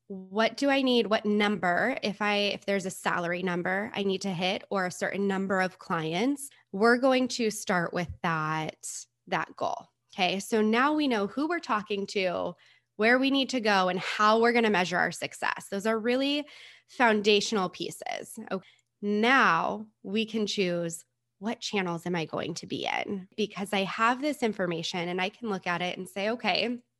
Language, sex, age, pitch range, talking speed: English, female, 20-39, 180-220 Hz, 190 wpm